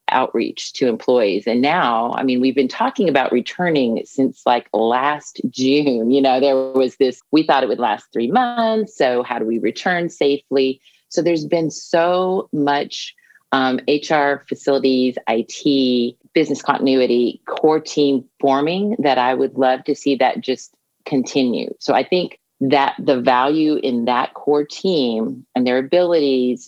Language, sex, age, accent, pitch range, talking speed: English, female, 40-59, American, 125-145 Hz, 155 wpm